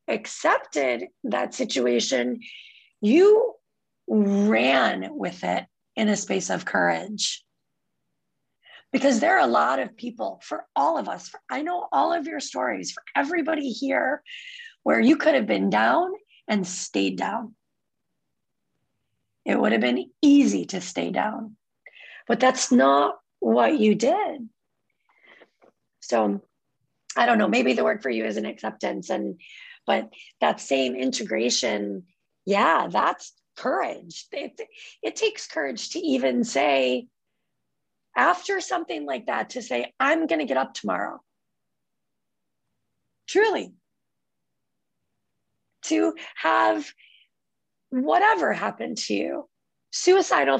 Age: 30-49